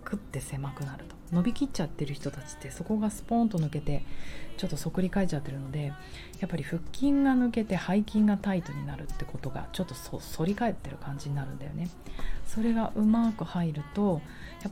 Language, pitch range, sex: Japanese, 145-185 Hz, female